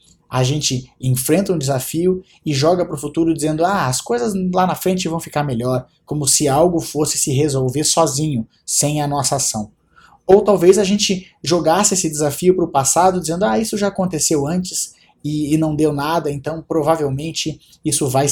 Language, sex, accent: Portuguese, male, Brazilian